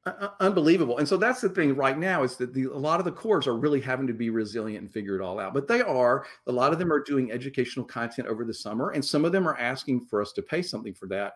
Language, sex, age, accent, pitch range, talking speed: English, male, 50-69, American, 120-160 Hz, 280 wpm